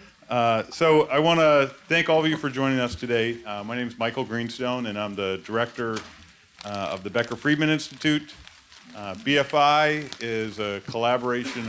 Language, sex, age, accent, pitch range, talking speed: English, male, 40-59, American, 105-135 Hz, 175 wpm